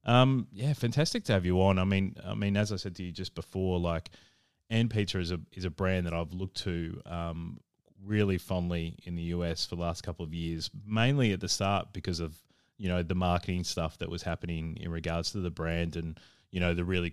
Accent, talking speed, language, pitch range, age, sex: Australian, 235 wpm, English, 85-100 Hz, 20-39, male